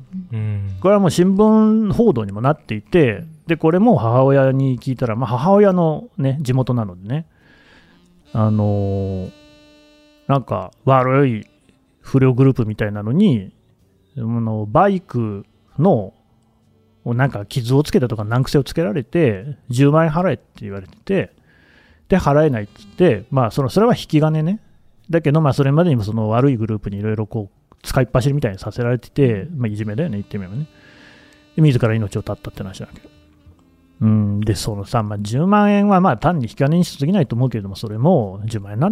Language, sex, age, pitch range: Japanese, male, 30-49, 110-150 Hz